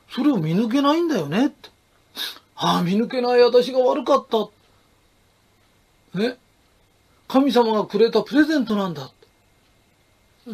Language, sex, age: Japanese, male, 40-59